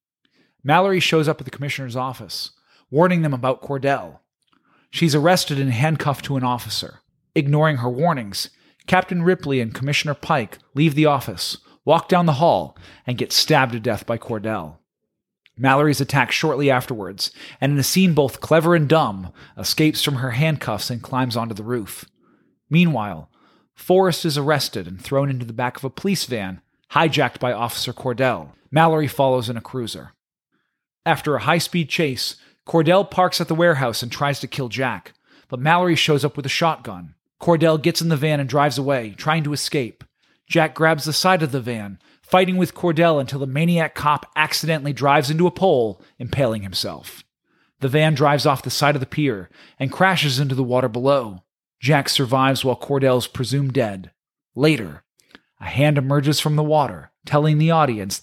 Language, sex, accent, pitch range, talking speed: English, male, American, 125-155 Hz, 170 wpm